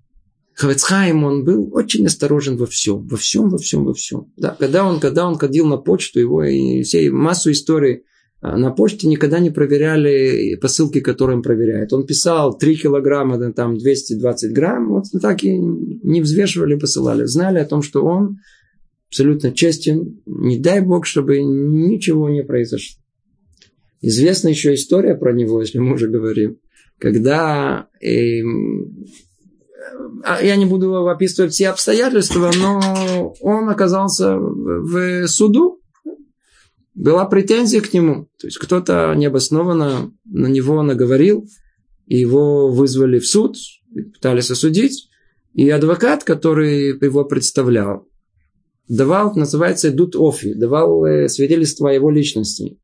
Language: Russian